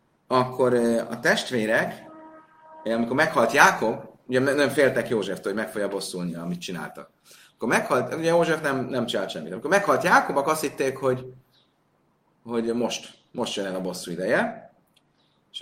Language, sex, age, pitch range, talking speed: Hungarian, male, 30-49, 120-180 Hz, 150 wpm